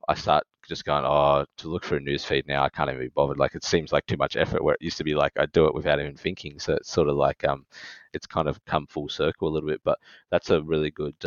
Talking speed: 300 wpm